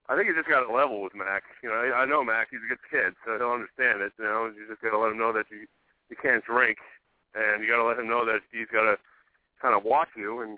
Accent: American